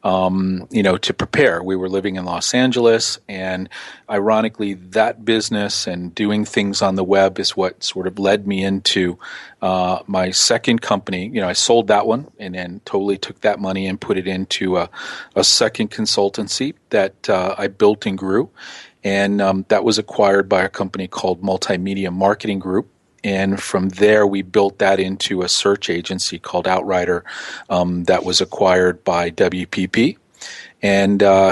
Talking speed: 170 wpm